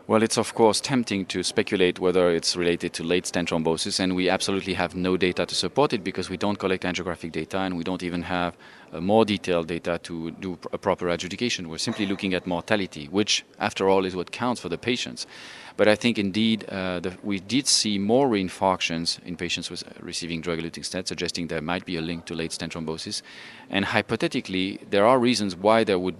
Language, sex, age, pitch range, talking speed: English, male, 30-49, 85-100 Hz, 215 wpm